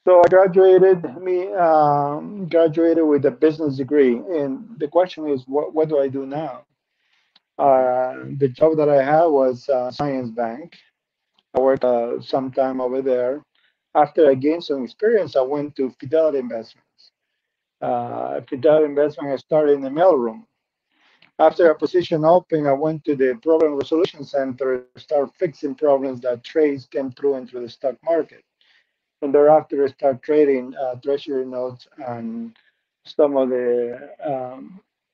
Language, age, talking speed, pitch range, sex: English, 40-59, 155 wpm, 130-165 Hz, male